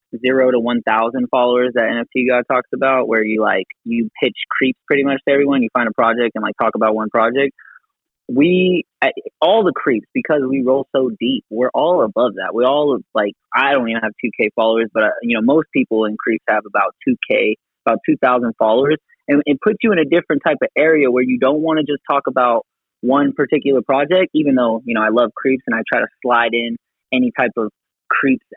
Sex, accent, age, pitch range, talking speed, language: male, American, 20-39, 115-140 Hz, 220 wpm, English